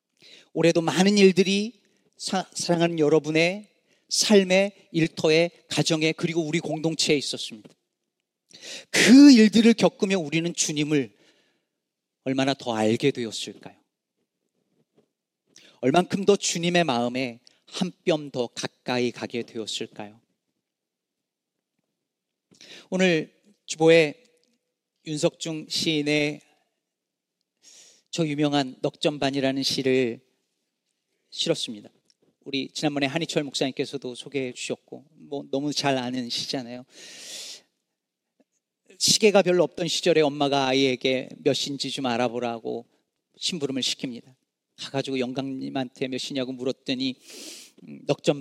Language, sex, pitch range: Korean, male, 135-170 Hz